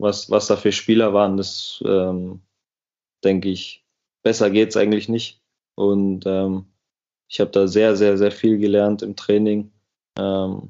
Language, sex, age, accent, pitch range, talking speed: German, male, 20-39, German, 105-125 Hz, 155 wpm